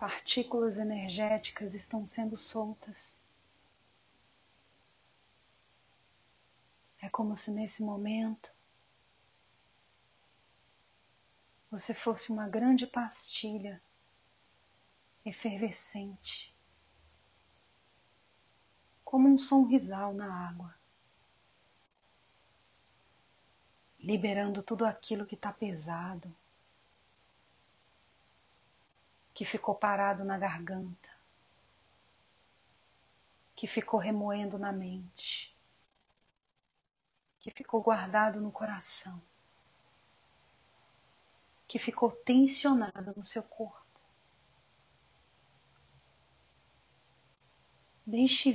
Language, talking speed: Portuguese, 60 wpm